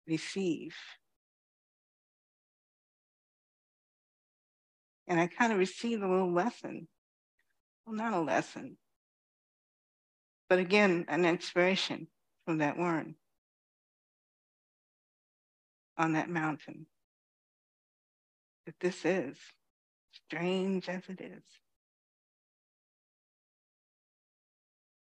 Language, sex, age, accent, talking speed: English, female, 60-79, American, 70 wpm